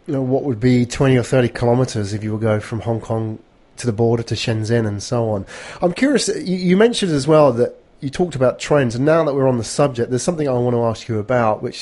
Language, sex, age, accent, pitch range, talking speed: English, male, 30-49, British, 115-140 Hz, 260 wpm